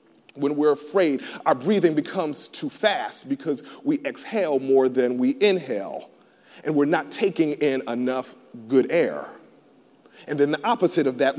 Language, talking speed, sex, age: English, 155 wpm, male, 40-59